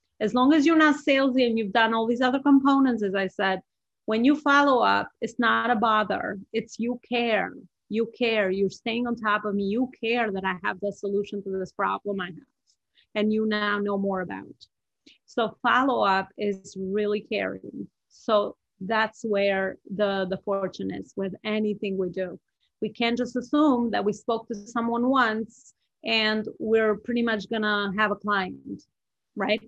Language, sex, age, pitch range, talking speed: English, female, 30-49, 205-250 Hz, 180 wpm